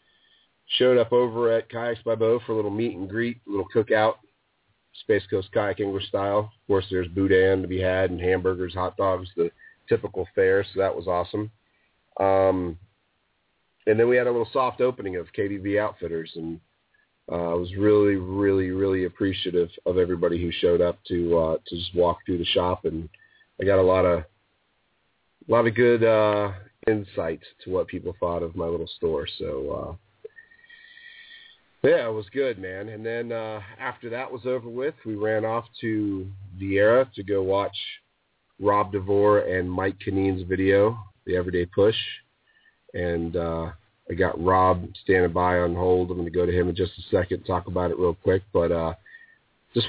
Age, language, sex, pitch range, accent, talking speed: 30-49, English, male, 90-115 Hz, American, 185 wpm